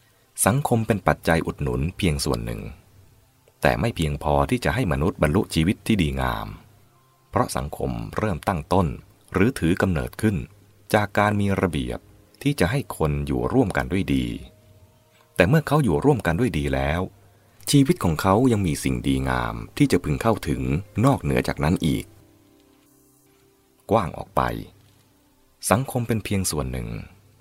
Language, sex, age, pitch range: English, male, 30-49, 75-115 Hz